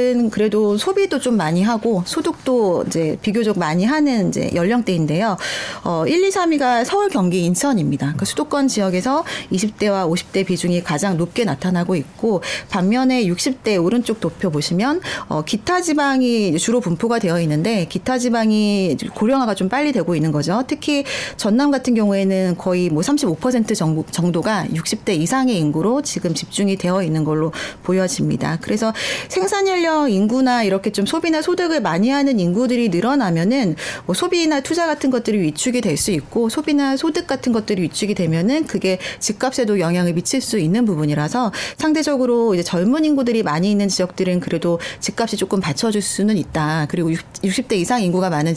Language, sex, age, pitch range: Korean, female, 30-49, 180-260 Hz